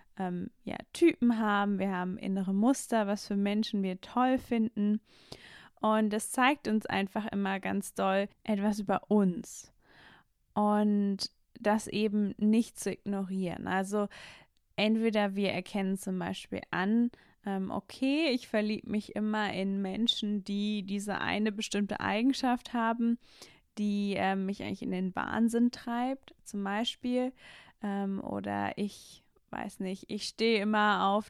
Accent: German